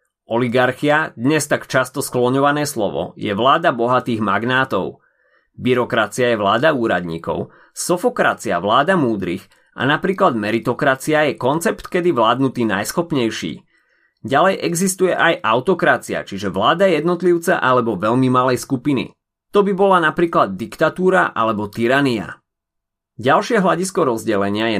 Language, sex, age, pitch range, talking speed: Slovak, male, 30-49, 110-155 Hz, 115 wpm